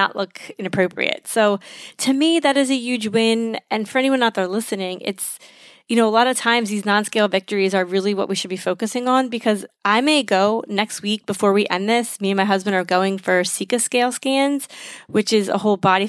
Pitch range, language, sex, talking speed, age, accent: 190-235 Hz, English, female, 225 wpm, 20-39, American